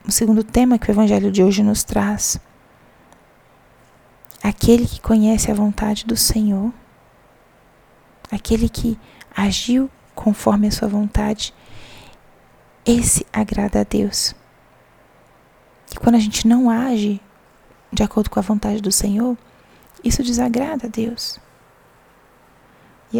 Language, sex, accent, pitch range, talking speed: Portuguese, female, Brazilian, 205-230 Hz, 120 wpm